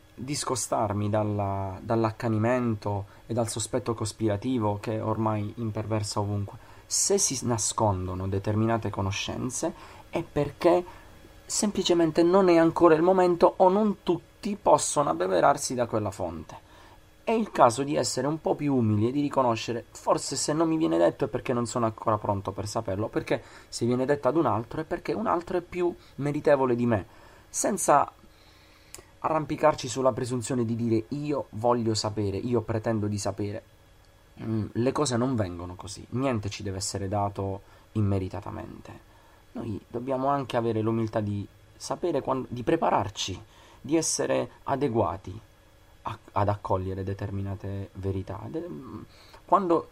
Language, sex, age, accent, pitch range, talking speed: Italian, male, 30-49, native, 105-135 Hz, 145 wpm